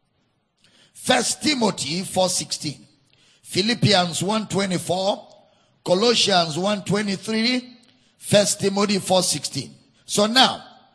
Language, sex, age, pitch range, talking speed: English, male, 50-69, 180-240 Hz, 90 wpm